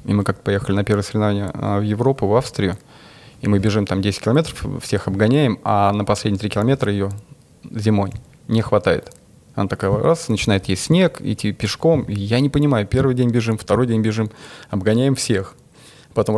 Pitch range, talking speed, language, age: 105-130 Hz, 180 wpm, Russian, 20-39